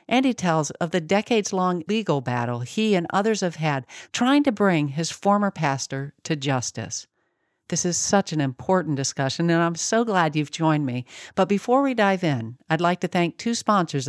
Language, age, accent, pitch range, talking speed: English, 50-69, American, 145-210 Hz, 190 wpm